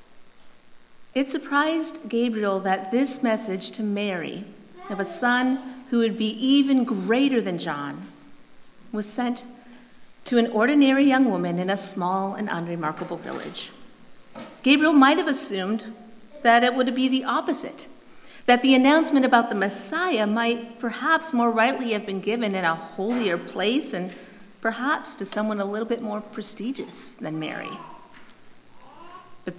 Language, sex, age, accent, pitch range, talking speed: English, female, 40-59, American, 195-260 Hz, 140 wpm